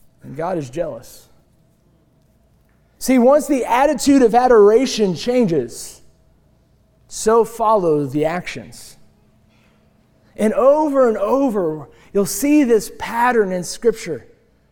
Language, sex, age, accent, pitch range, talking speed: English, male, 30-49, American, 160-225 Hz, 100 wpm